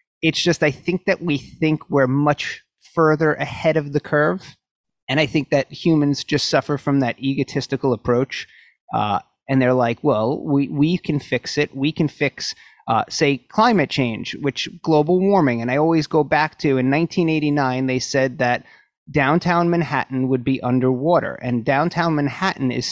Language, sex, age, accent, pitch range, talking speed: English, male, 30-49, American, 135-170 Hz, 170 wpm